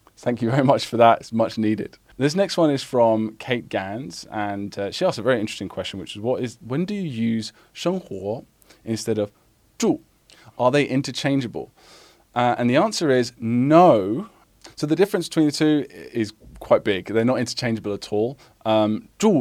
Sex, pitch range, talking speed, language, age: male, 105-130 Hz, 190 wpm, English, 20-39